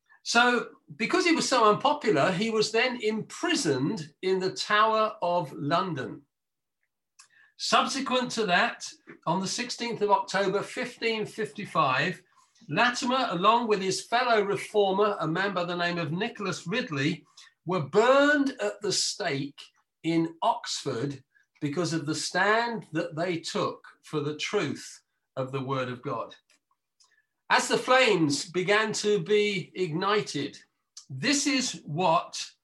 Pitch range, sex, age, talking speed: 160-240 Hz, male, 50-69, 130 wpm